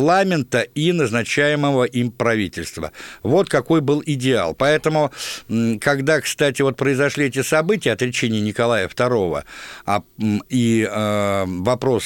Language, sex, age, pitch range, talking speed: Russian, male, 60-79, 100-130 Hz, 100 wpm